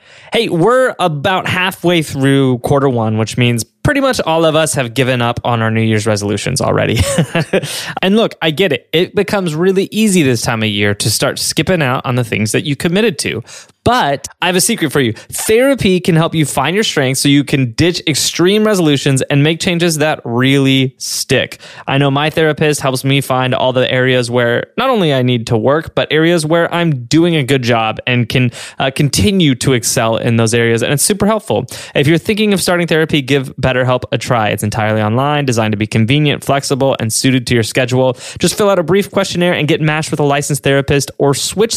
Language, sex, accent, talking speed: English, male, American, 215 wpm